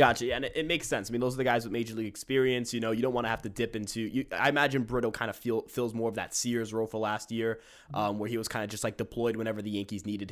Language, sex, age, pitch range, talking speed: English, male, 20-39, 110-130 Hz, 320 wpm